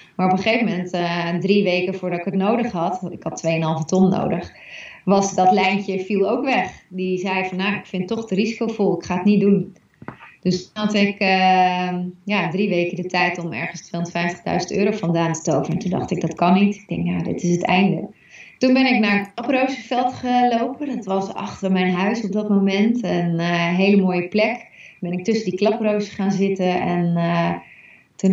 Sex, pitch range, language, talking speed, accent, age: female, 180-210 Hz, Dutch, 205 wpm, Dutch, 30-49